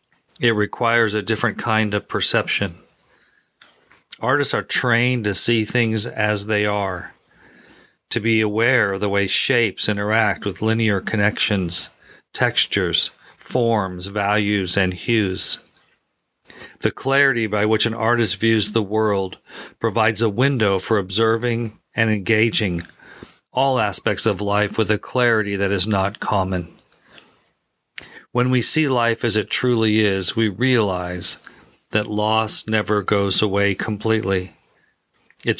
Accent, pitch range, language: American, 100-115 Hz, English